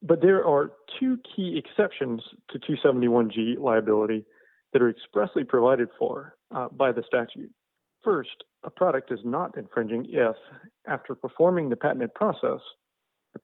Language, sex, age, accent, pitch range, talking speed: English, male, 40-59, American, 115-140 Hz, 140 wpm